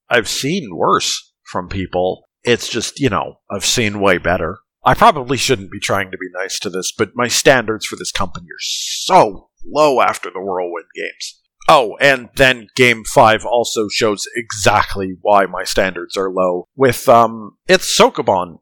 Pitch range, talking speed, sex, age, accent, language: 100-145 Hz, 170 wpm, male, 50-69, American, English